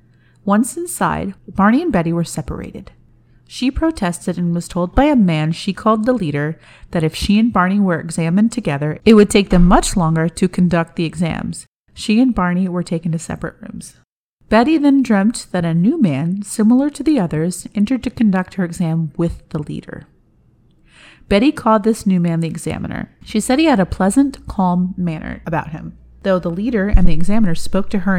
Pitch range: 170-225 Hz